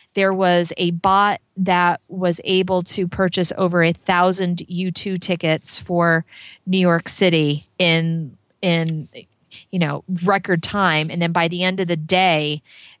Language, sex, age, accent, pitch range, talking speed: English, female, 40-59, American, 170-200 Hz, 150 wpm